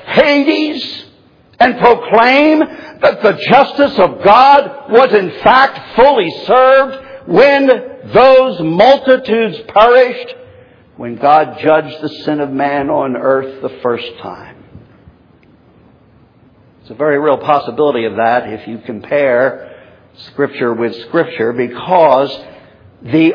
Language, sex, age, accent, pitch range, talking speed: English, male, 60-79, American, 130-220 Hz, 110 wpm